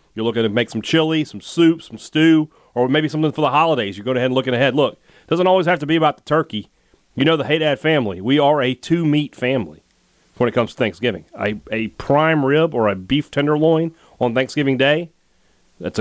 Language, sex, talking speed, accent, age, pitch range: English, male, 215 wpm, American, 30-49, 110-150 Hz